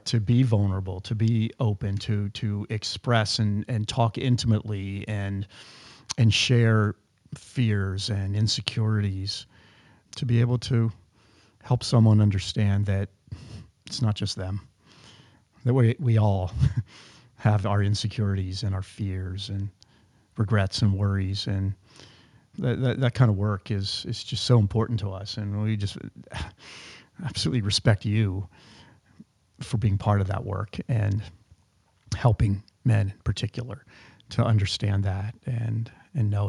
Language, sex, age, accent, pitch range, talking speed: English, male, 40-59, American, 100-120 Hz, 135 wpm